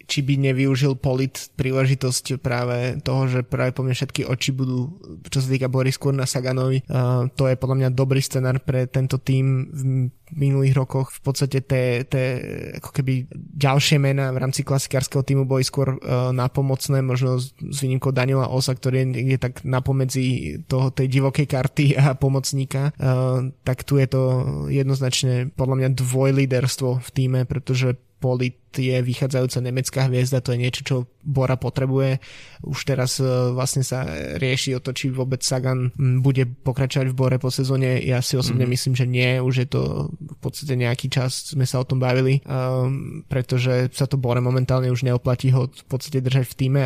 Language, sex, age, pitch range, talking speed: Slovak, male, 20-39, 125-135 Hz, 175 wpm